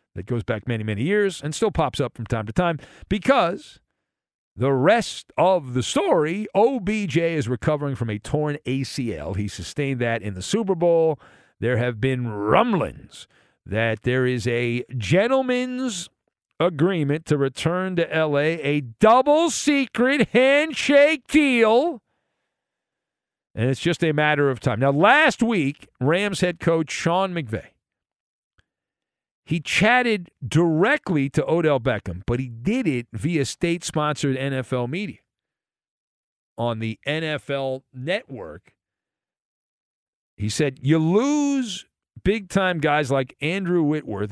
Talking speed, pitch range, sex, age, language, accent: 125 wpm, 125-210 Hz, male, 50-69, English, American